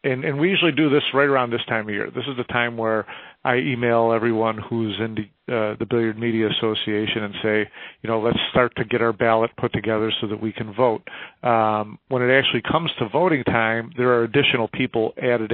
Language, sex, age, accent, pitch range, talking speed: English, male, 40-59, American, 105-120 Hz, 220 wpm